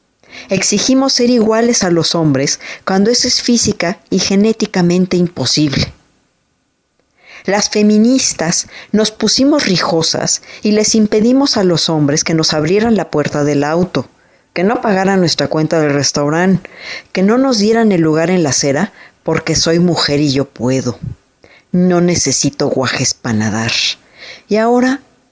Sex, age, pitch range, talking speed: female, 40-59, 150-205 Hz, 140 wpm